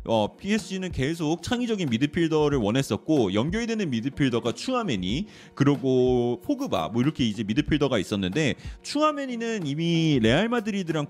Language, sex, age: Korean, male, 30-49